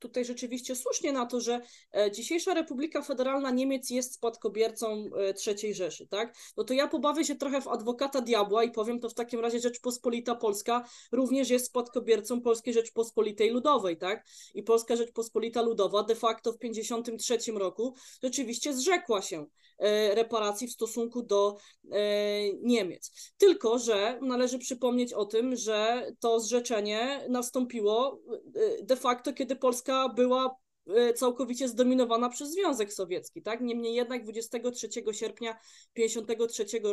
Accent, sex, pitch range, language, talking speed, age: native, female, 220-260 Hz, Polish, 135 wpm, 20-39